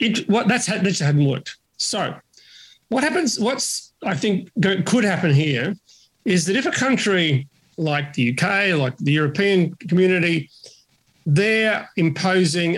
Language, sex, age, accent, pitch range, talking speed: English, male, 40-59, Australian, 150-195 Hz, 150 wpm